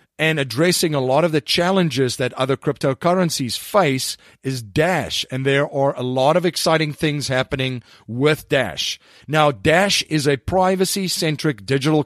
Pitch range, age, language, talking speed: 125-155 Hz, 40-59, English, 150 wpm